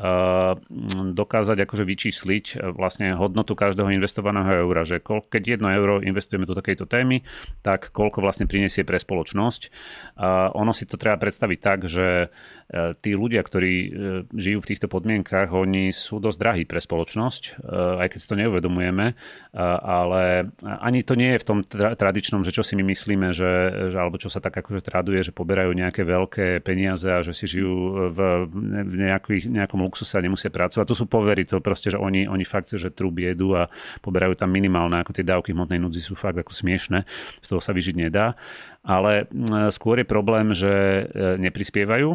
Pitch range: 95-105 Hz